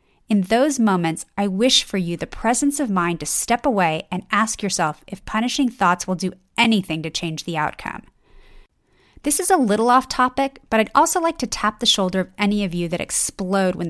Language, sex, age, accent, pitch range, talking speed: English, female, 30-49, American, 180-230 Hz, 205 wpm